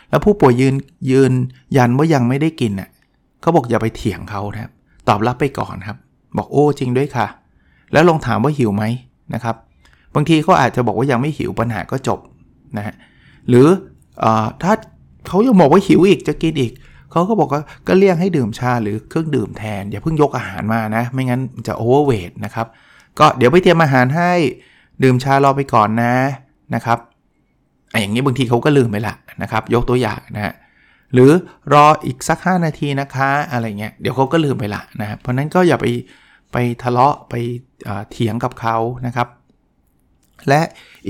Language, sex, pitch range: Thai, male, 115-145 Hz